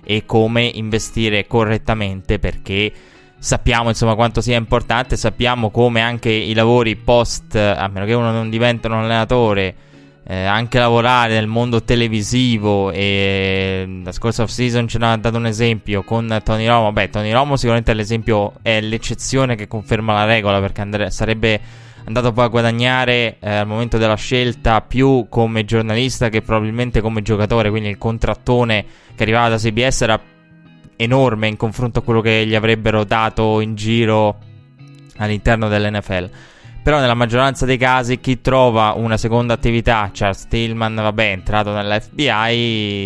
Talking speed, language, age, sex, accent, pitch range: 150 wpm, Italian, 20-39, male, native, 105-120 Hz